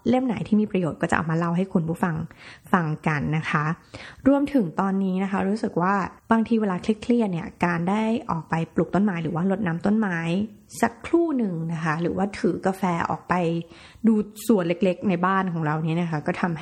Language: Thai